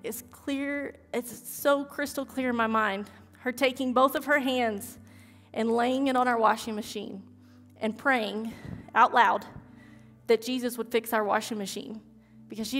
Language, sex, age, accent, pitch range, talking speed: English, female, 20-39, American, 220-255 Hz, 165 wpm